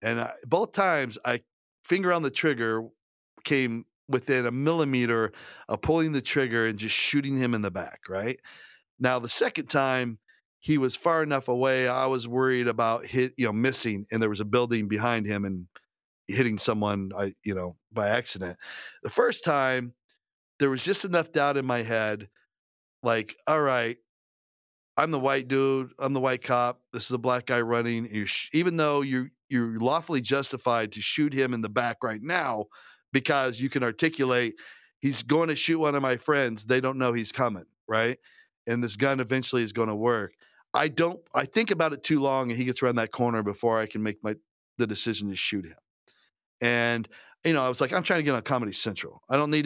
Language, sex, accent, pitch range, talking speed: English, male, American, 110-135 Hz, 200 wpm